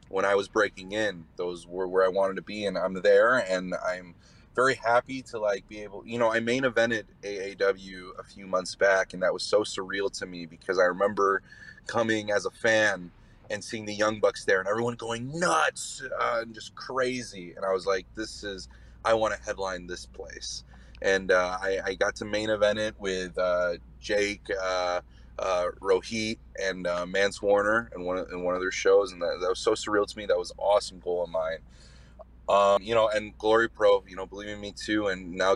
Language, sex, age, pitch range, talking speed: English, male, 30-49, 90-115 Hz, 215 wpm